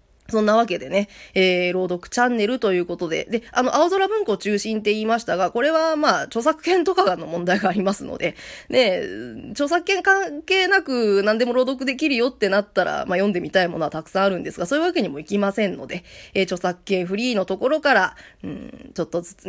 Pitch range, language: 190-275 Hz, Japanese